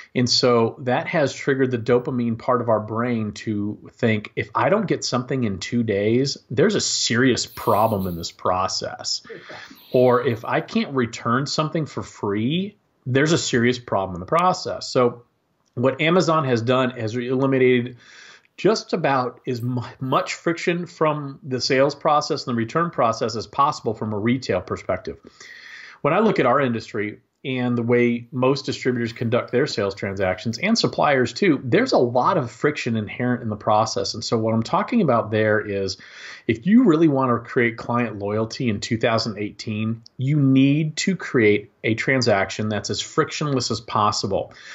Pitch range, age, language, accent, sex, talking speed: 115-135 Hz, 40-59, English, American, male, 170 wpm